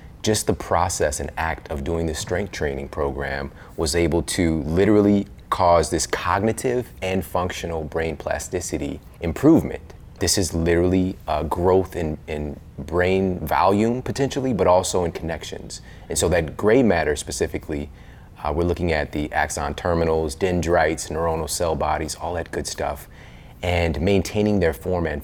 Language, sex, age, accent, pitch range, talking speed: English, male, 30-49, American, 80-95 Hz, 150 wpm